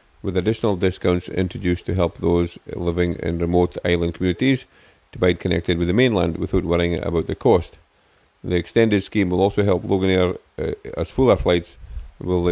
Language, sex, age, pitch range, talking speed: English, male, 50-69, 85-95 Hz, 175 wpm